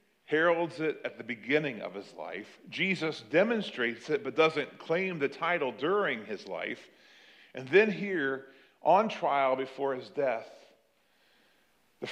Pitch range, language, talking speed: 145-195 Hz, English, 140 wpm